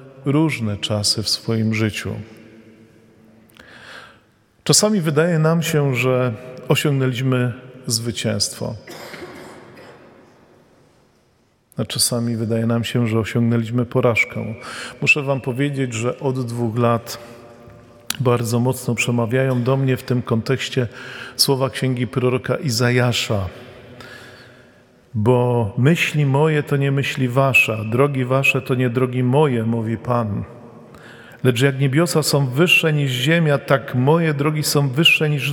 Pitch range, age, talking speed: 120-140 Hz, 40-59, 115 wpm